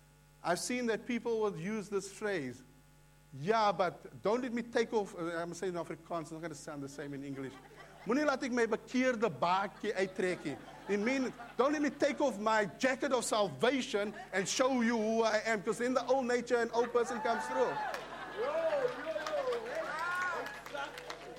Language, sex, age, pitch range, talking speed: English, male, 50-69, 180-245 Hz, 150 wpm